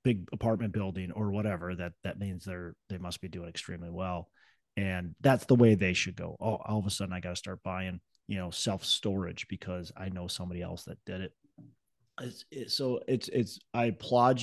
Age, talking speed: 30-49, 210 wpm